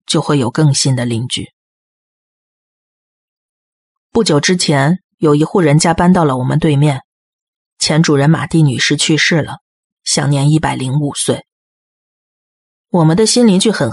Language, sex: Chinese, female